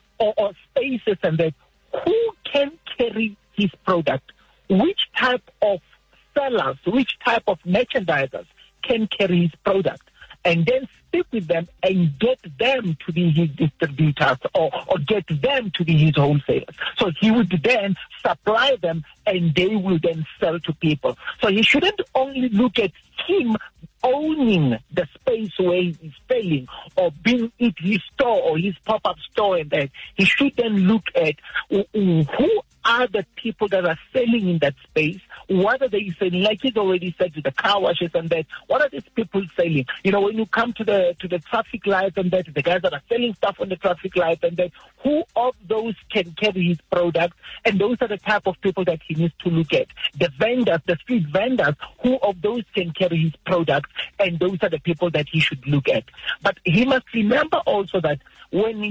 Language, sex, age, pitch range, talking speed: English, male, 50-69, 170-230 Hz, 190 wpm